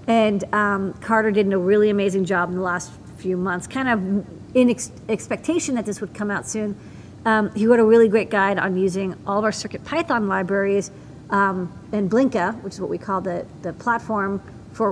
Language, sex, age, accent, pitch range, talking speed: English, female, 40-59, American, 185-230 Hz, 200 wpm